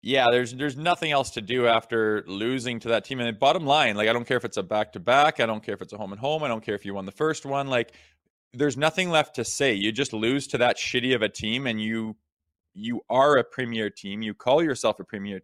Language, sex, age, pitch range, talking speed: English, male, 20-39, 110-140 Hz, 255 wpm